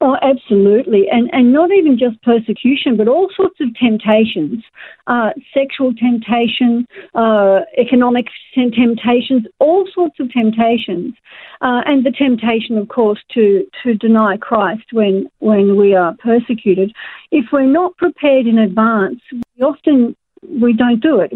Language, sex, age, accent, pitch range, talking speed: English, female, 50-69, Australian, 230-295 Hz, 140 wpm